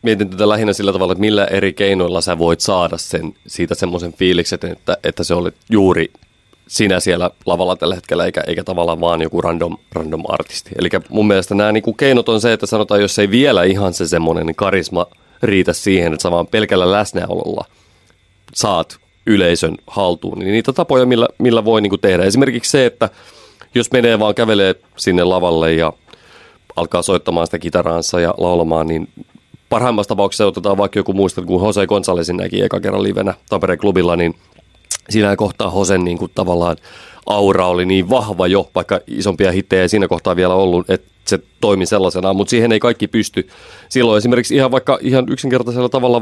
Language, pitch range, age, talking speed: Finnish, 90-110 Hz, 30-49, 180 wpm